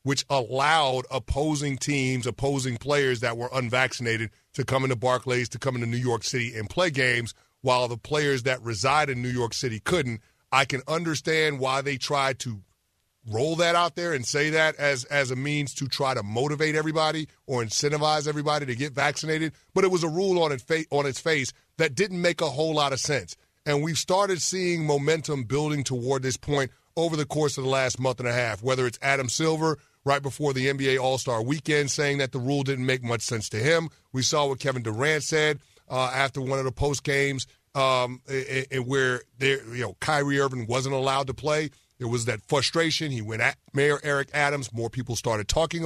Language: English